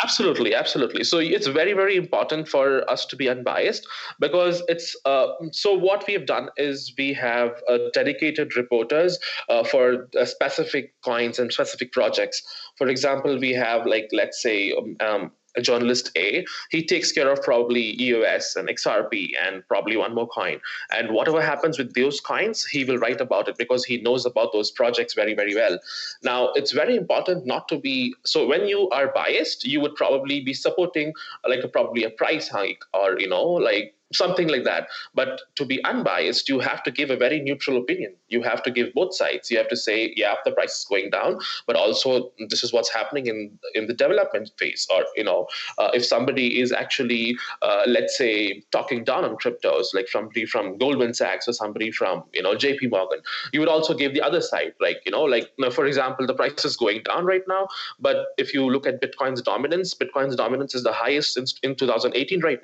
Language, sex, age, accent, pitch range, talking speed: English, male, 20-39, Indian, 125-195 Hz, 205 wpm